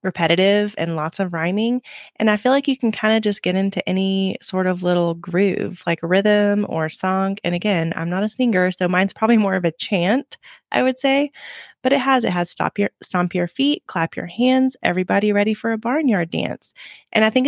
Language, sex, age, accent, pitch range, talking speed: English, female, 20-39, American, 175-220 Hz, 215 wpm